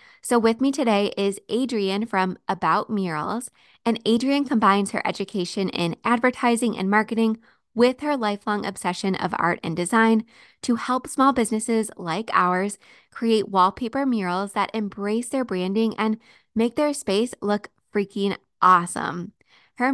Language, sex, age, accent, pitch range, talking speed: English, female, 20-39, American, 195-240 Hz, 140 wpm